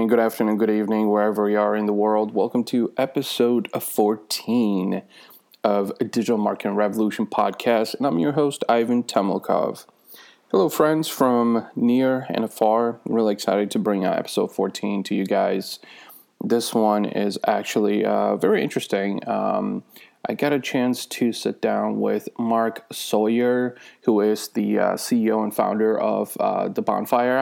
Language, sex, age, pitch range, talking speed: English, male, 20-39, 105-120 Hz, 150 wpm